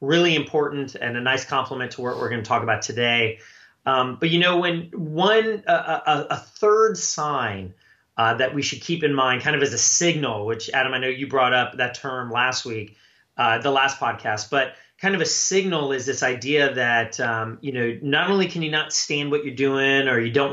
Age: 30-49